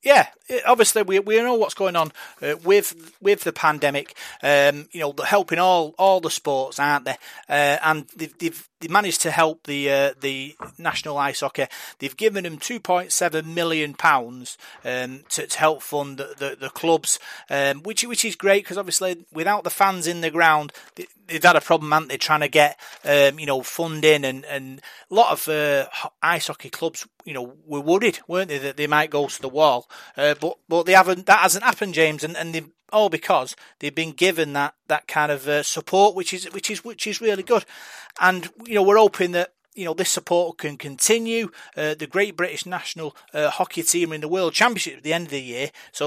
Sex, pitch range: male, 145-185 Hz